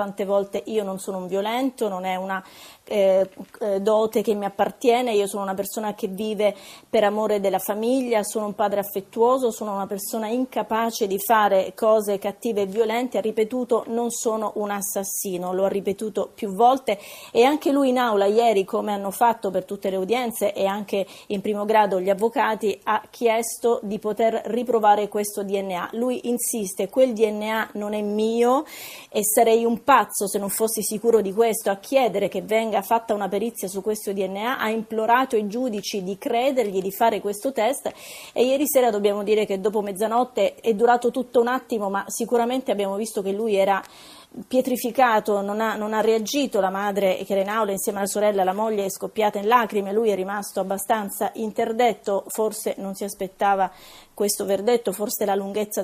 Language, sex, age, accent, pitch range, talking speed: Italian, female, 30-49, native, 200-230 Hz, 180 wpm